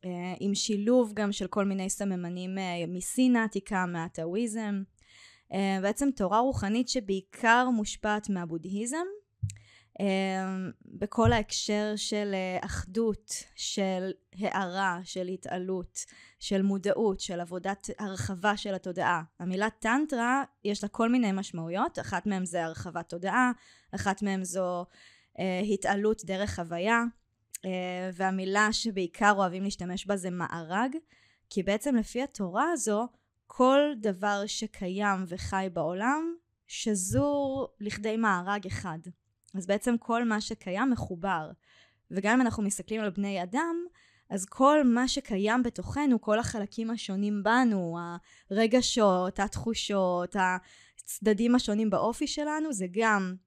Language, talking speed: Hebrew, 115 wpm